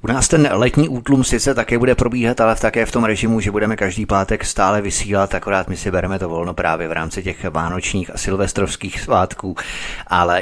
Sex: male